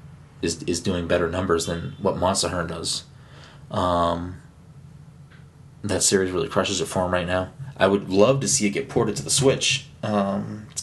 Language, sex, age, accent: English, male, 30-49, American